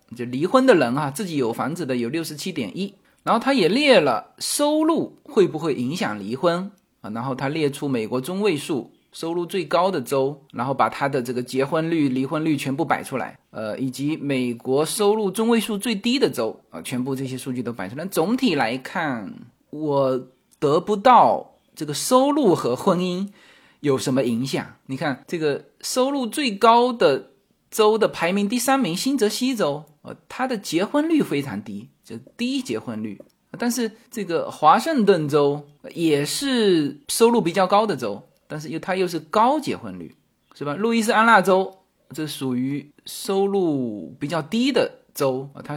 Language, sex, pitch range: Chinese, male, 140-230 Hz